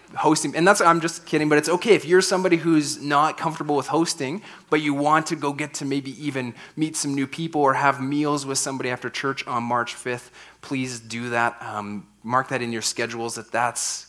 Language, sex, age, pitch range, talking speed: English, male, 30-49, 110-135 Hz, 215 wpm